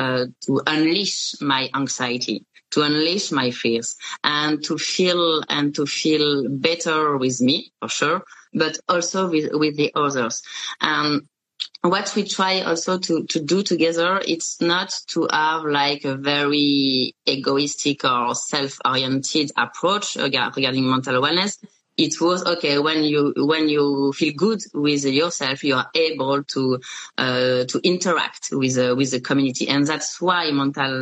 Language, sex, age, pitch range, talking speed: French, female, 30-49, 135-165 Hz, 150 wpm